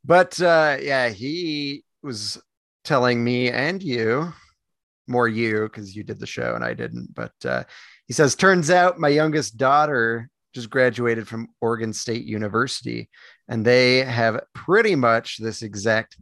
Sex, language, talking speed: male, English, 150 wpm